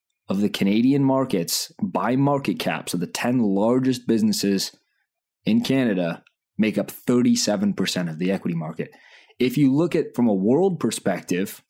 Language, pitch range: English, 100-140 Hz